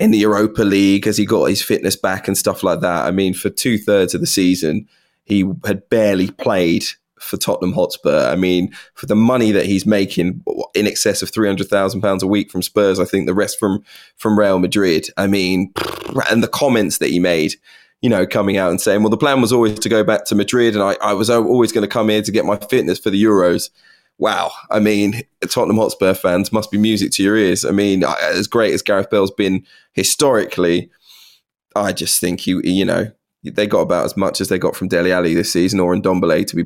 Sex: male